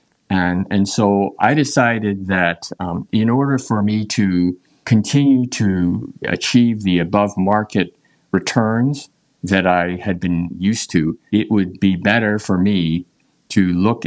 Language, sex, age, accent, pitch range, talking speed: English, male, 50-69, American, 90-115 Hz, 140 wpm